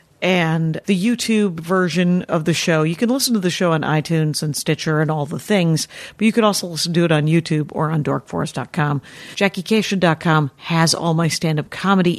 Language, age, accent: English, 50-69, American